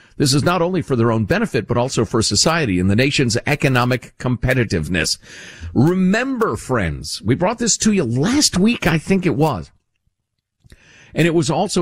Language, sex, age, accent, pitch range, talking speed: English, male, 50-69, American, 100-155 Hz, 175 wpm